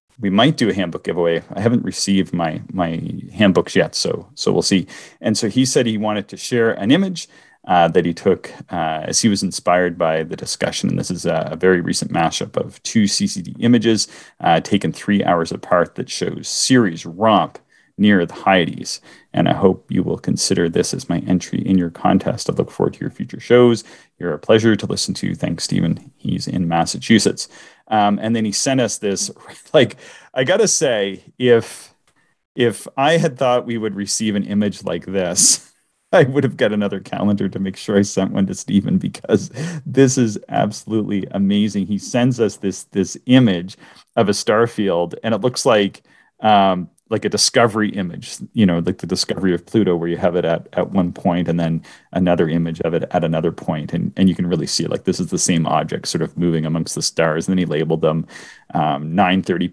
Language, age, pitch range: English, 30-49, 85-110 Hz